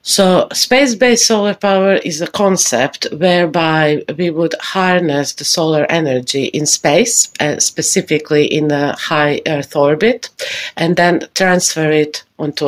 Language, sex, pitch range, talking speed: English, female, 150-180 Hz, 135 wpm